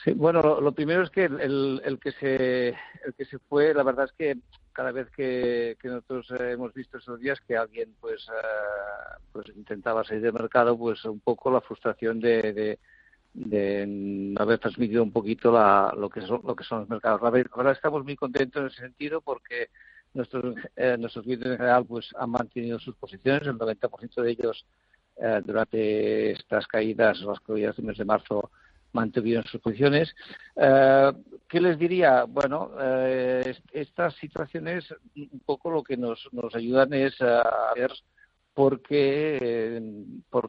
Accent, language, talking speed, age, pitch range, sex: Spanish, Spanish, 180 wpm, 50-69, 115-140 Hz, male